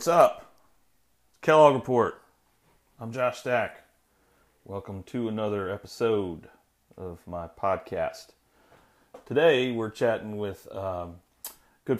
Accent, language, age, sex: American, English, 40-59, male